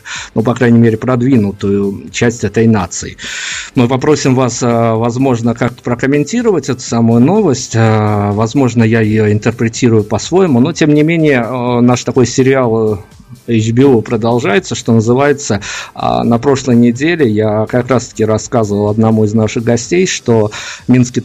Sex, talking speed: male, 135 wpm